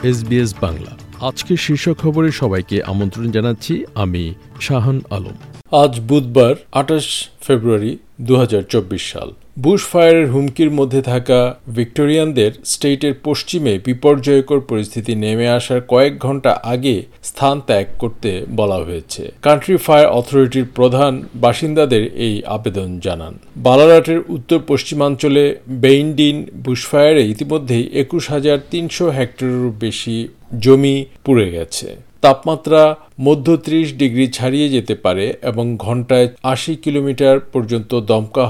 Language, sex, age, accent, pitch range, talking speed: Bengali, male, 50-69, native, 115-145 Hz, 110 wpm